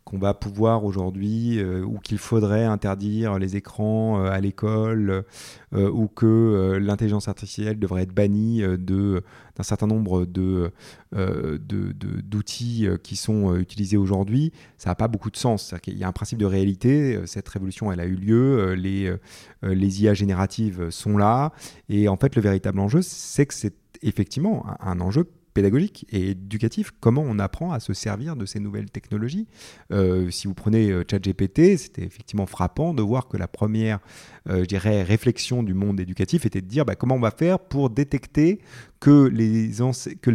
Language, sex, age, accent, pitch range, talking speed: French, male, 30-49, French, 100-125 Hz, 180 wpm